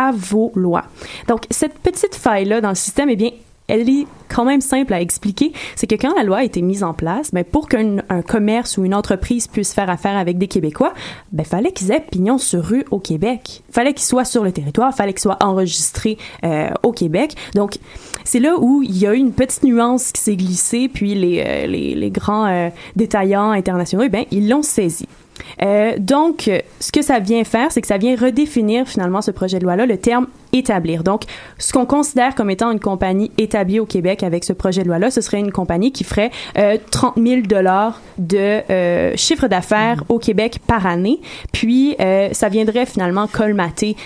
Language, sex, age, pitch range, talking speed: French, female, 20-39, 190-250 Hz, 210 wpm